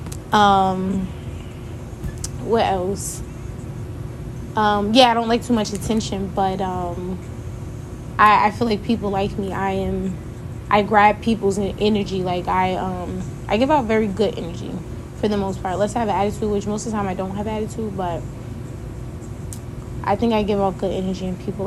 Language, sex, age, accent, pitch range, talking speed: English, female, 20-39, American, 180-210 Hz, 175 wpm